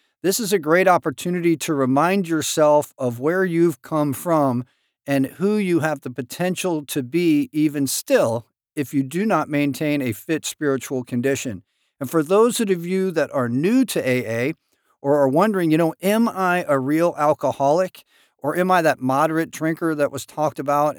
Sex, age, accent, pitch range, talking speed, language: male, 50-69, American, 135-170 Hz, 175 wpm, English